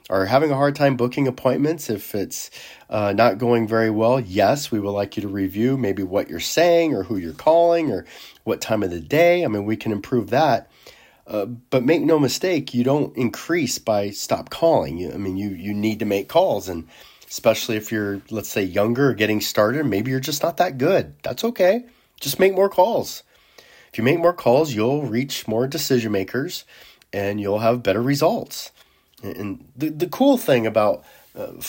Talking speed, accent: 195 wpm, American